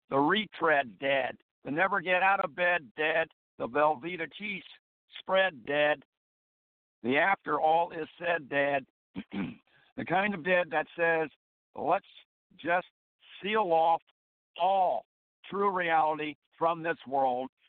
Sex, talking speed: male, 125 wpm